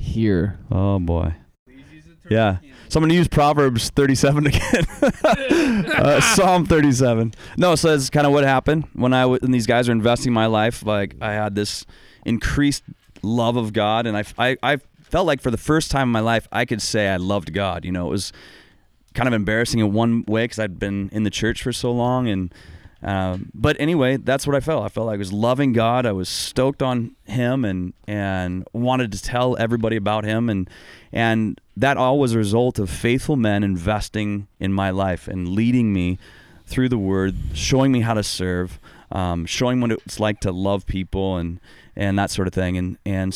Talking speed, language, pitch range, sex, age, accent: 205 wpm, English, 95-125 Hz, male, 30-49, American